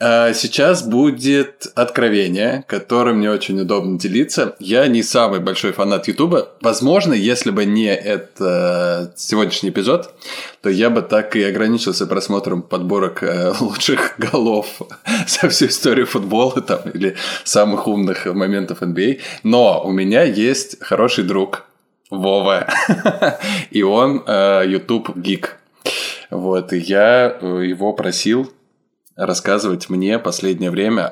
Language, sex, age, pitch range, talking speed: Russian, male, 20-39, 90-105 Hz, 120 wpm